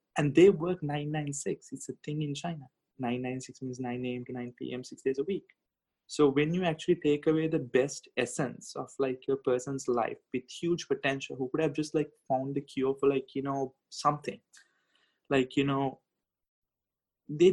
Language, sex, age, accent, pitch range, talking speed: English, male, 20-39, Indian, 125-145 Hz, 185 wpm